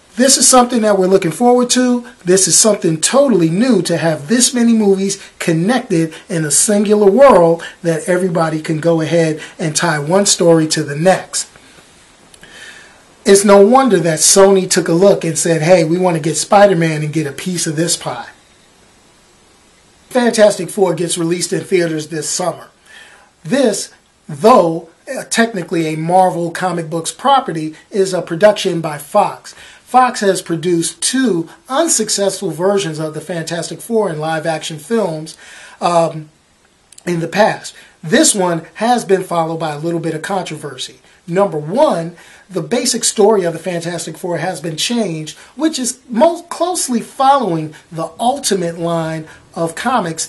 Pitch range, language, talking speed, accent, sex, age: 165-210 Hz, English, 155 wpm, American, male, 40-59